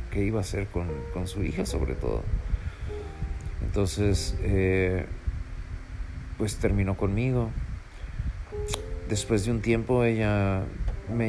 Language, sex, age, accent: Spanish, male, 40-59, Mexican